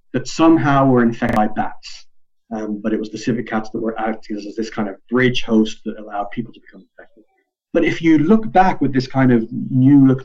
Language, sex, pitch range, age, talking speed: English, male, 110-130 Hz, 30-49, 230 wpm